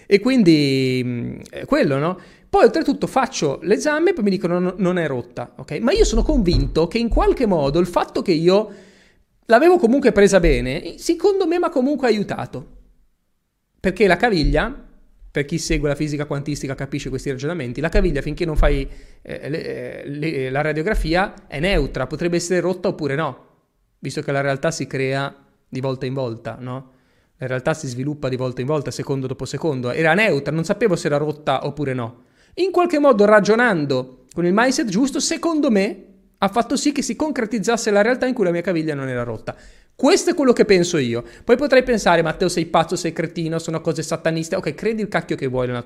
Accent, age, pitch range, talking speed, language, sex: native, 30-49, 140-215 Hz, 190 wpm, Italian, male